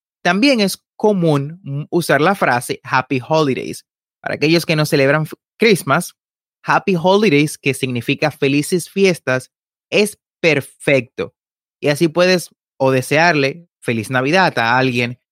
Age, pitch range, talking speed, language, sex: 30-49, 125-175 Hz, 120 wpm, Spanish, male